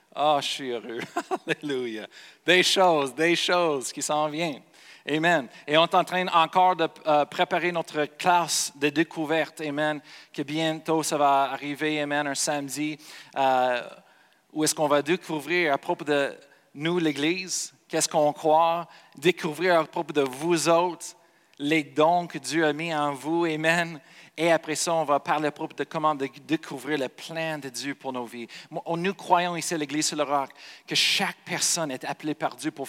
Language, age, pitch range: French, 50-69, 150-170 Hz